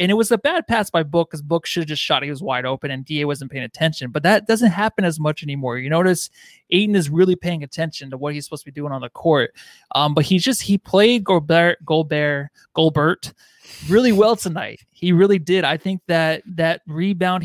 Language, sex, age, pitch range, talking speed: English, male, 20-39, 150-180 Hz, 225 wpm